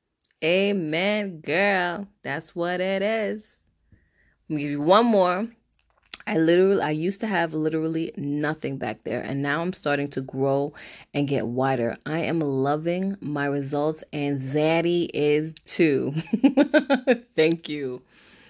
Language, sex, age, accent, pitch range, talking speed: English, female, 20-39, American, 140-190 Hz, 135 wpm